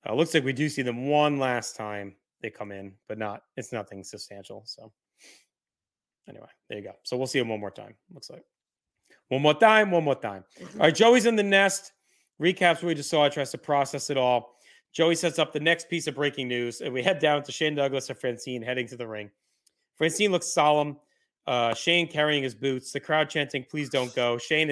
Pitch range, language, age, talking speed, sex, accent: 130-170 Hz, English, 30-49, 220 wpm, male, American